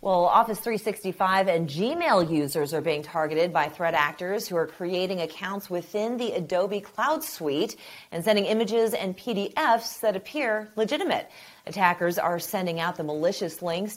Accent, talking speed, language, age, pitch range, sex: American, 155 wpm, English, 40-59, 160-220 Hz, female